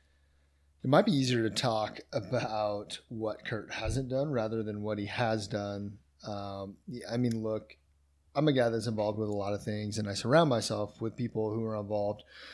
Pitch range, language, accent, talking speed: 105-120 Hz, English, American, 195 wpm